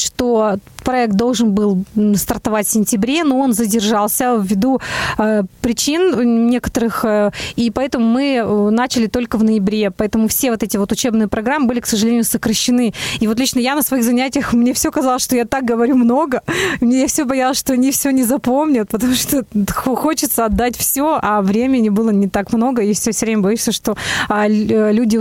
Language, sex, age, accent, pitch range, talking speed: Russian, female, 20-39, native, 220-260 Hz, 180 wpm